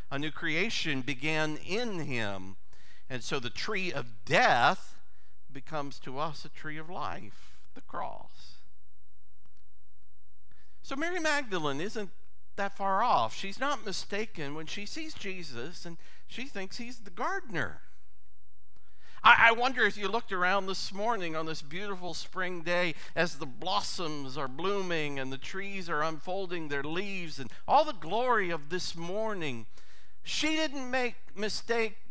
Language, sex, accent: English, male, American